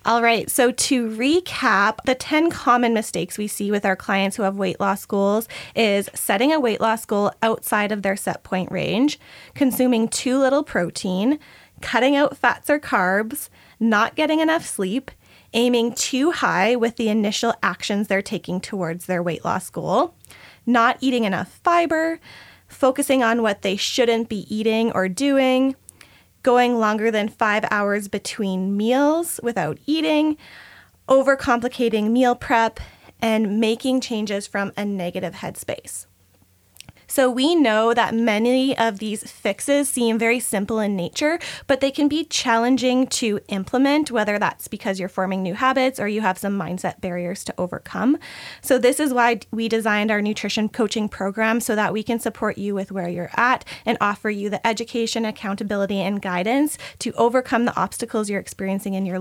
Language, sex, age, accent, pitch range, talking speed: English, female, 10-29, American, 195-250 Hz, 165 wpm